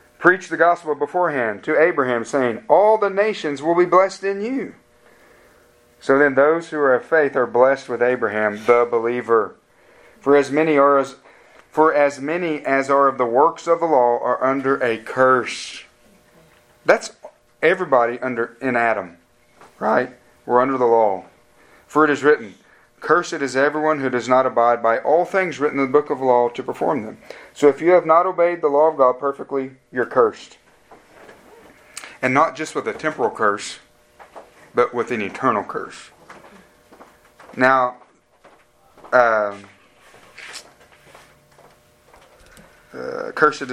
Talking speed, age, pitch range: 150 wpm, 40-59, 120-155 Hz